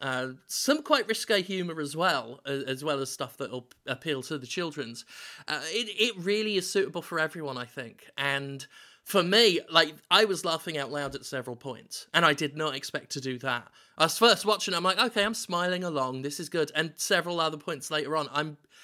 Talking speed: 215 wpm